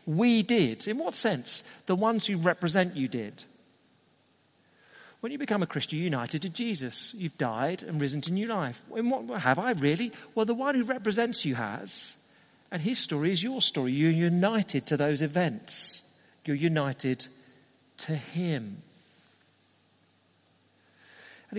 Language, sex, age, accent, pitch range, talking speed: English, male, 40-59, British, 130-185 Hz, 145 wpm